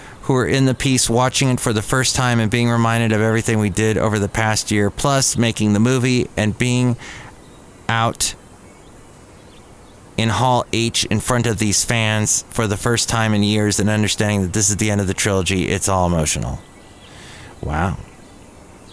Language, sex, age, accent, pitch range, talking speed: English, male, 30-49, American, 105-130 Hz, 180 wpm